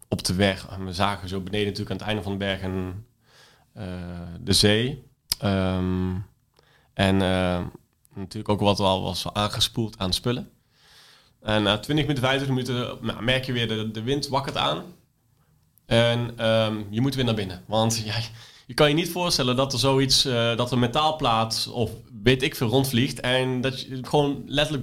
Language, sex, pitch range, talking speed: Dutch, male, 100-130 Hz, 190 wpm